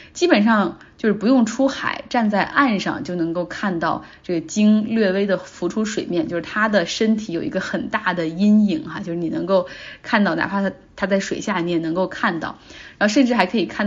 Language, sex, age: Chinese, female, 20-39